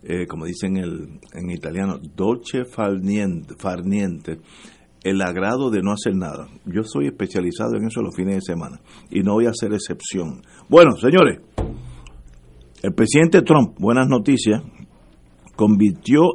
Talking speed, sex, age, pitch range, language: 140 wpm, male, 50-69, 100-135 Hz, Spanish